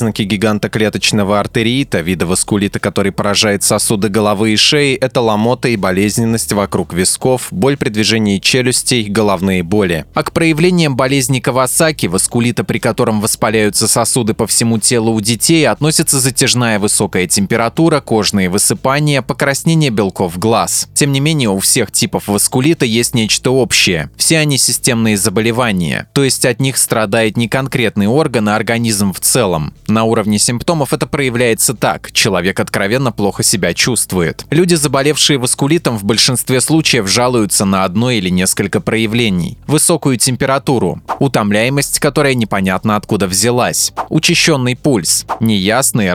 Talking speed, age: 140 wpm, 20-39